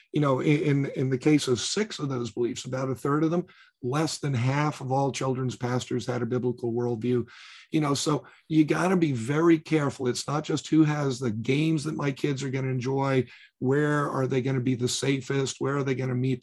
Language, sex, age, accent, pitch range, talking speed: English, male, 50-69, American, 125-155 Hz, 235 wpm